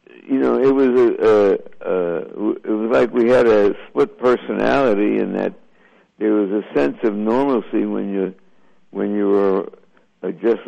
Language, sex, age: English, male, 60-79